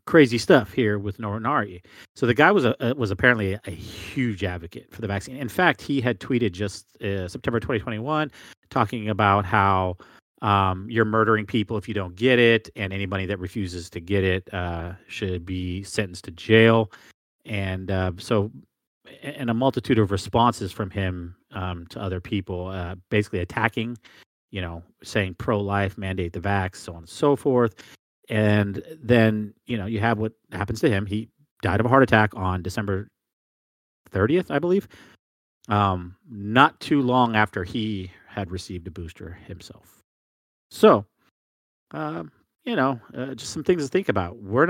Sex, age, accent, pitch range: male, 40-59, American, 95-115 Hz